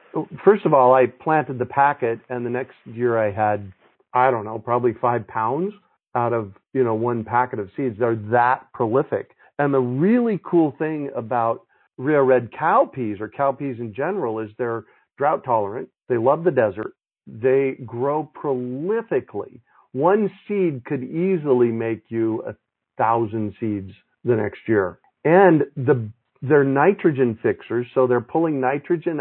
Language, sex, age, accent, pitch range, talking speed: English, male, 50-69, American, 120-155 Hz, 155 wpm